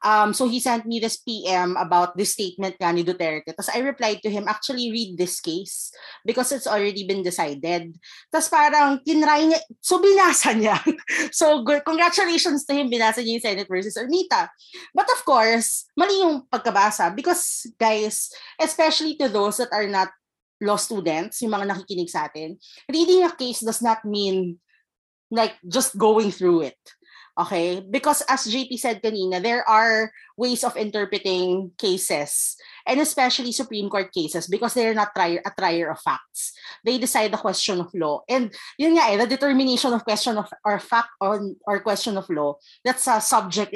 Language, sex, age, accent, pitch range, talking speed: Filipino, female, 20-39, native, 195-270 Hz, 165 wpm